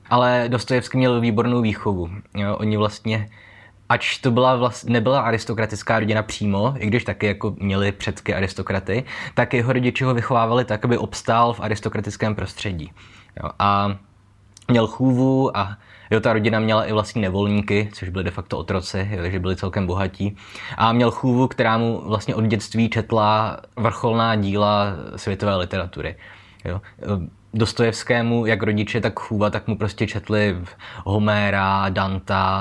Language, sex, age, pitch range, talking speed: Czech, male, 20-39, 100-110 Hz, 150 wpm